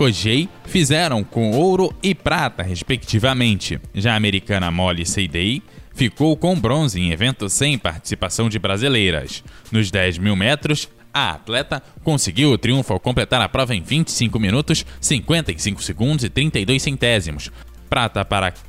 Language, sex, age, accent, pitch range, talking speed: Portuguese, male, 10-29, Brazilian, 95-145 Hz, 140 wpm